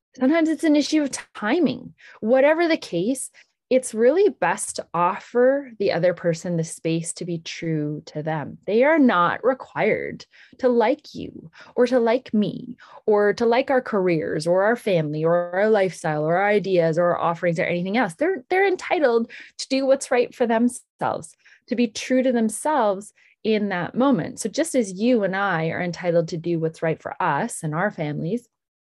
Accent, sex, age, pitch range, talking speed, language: American, female, 20-39, 170-270 Hz, 185 wpm, English